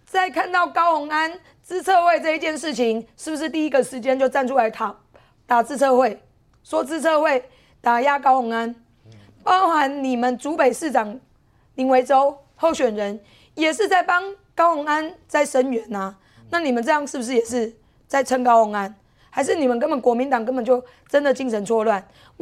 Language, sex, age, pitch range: Chinese, female, 20-39, 225-300 Hz